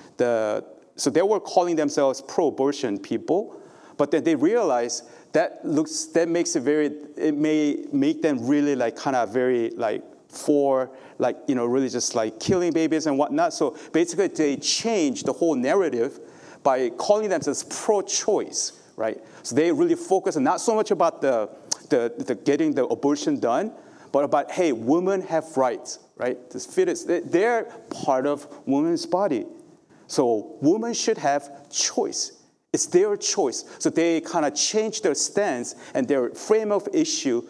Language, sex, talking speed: English, male, 160 wpm